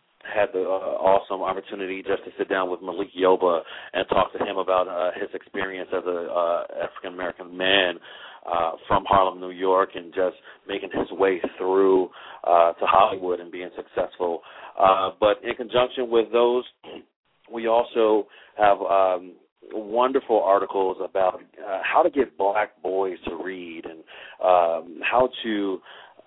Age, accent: 40-59, American